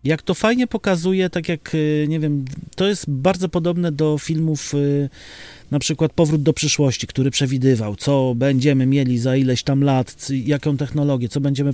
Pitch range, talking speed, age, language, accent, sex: 140-170 Hz, 165 wpm, 30-49, Polish, native, male